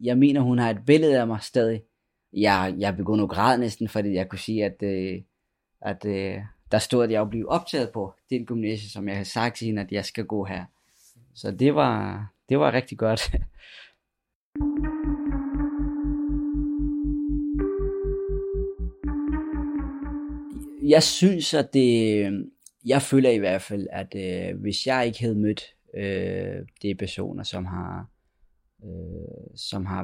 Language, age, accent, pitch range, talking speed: Danish, 20-39, native, 100-140 Hz, 150 wpm